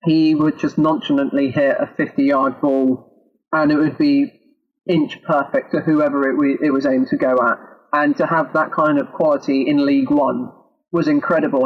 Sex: male